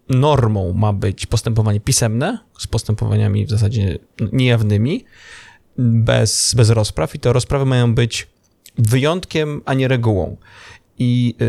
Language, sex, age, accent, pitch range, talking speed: Polish, male, 20-39, native, 110-130 Hz, 120 wpm